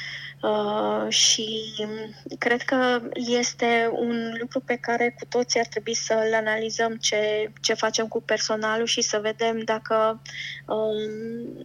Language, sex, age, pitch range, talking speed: Romanian, female, 20-39, 200-230 Hz, 130 wpm